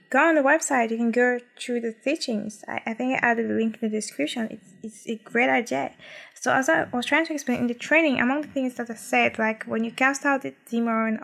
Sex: female